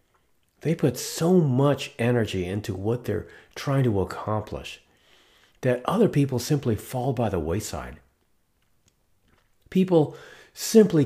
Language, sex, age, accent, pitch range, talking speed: English, male, 50-69, American, 100-145 Hz, 115 wpm